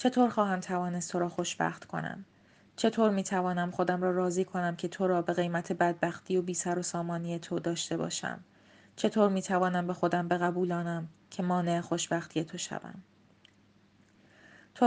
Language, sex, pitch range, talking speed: Persian, female, 175-185 Hz, 155 wpm